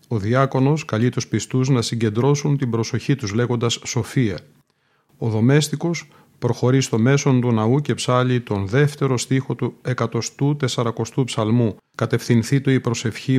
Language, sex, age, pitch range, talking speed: Greek, male, 40-59, 110-135 Hz, 145 wpm